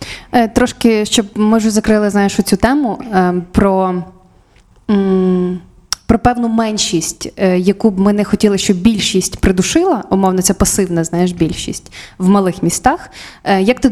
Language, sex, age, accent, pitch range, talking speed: Ukrainian, female, 20-39, native, 185-220 Hz, 125 wpm